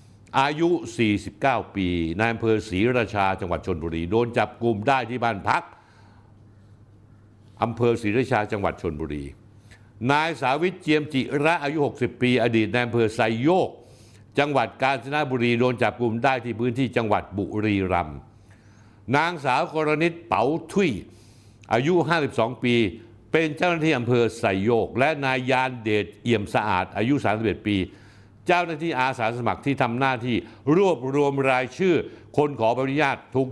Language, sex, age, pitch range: Thai, male, 60-79, 105-135 Hz